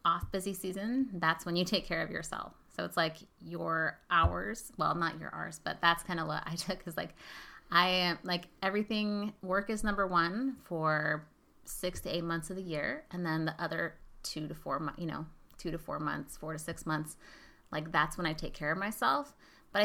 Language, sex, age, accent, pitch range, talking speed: English, female, 30-49, American, 160-190 Hz, 210 wpm